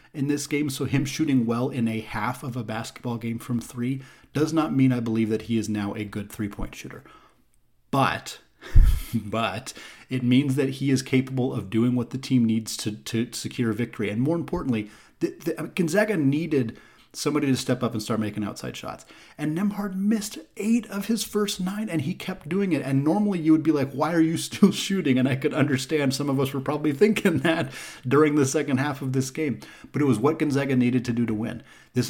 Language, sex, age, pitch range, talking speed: English, male, 30-49, 115-155 Hz, 215 wpm